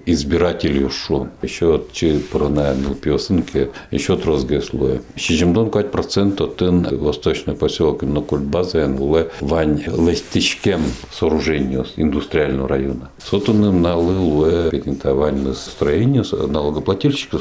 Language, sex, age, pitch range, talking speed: Russian, male, 60-79, 75-100 Hz, 115 wpm